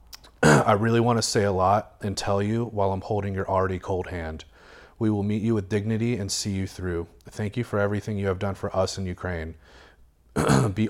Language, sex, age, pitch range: English, male, 30-49, 85-105 Hz